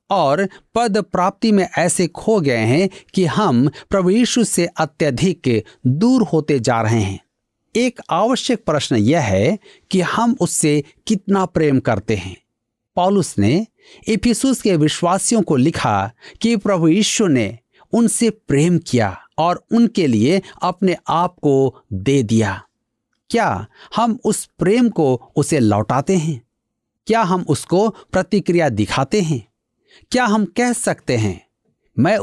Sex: male